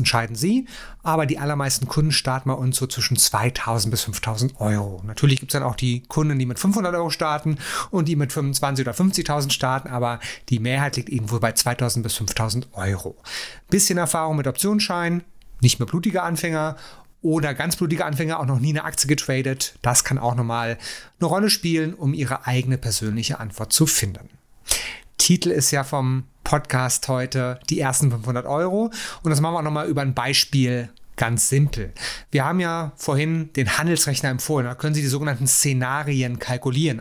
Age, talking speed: 30-49, 180 wpm